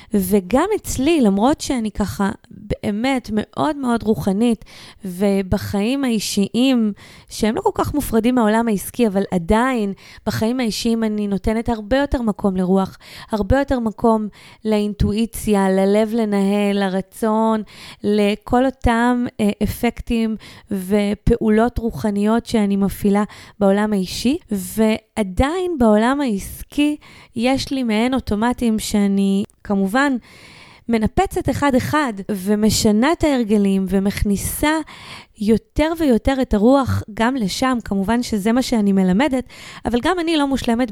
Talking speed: 110 wpm